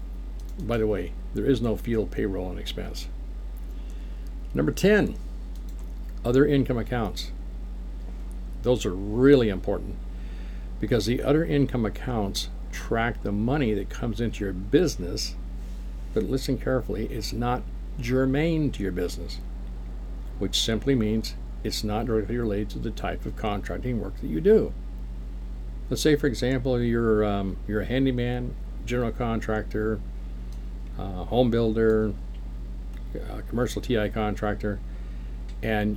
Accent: American